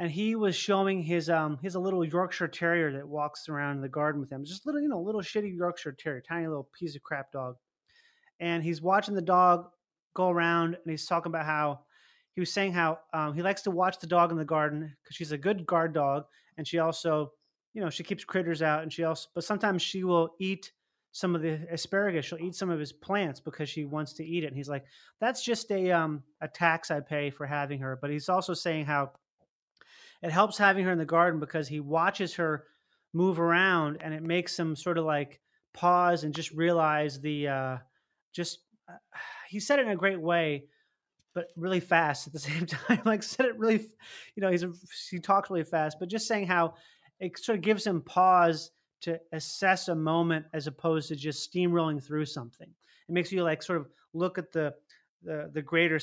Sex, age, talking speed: male, 30-49, 220 wpm